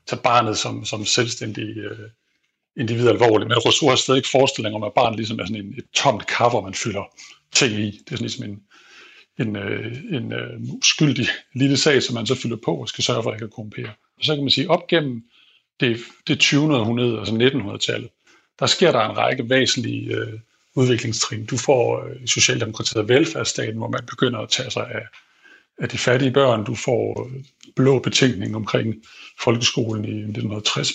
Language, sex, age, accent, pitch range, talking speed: Danish, male, 60-79, native, 110-135 Hz, 200 wpm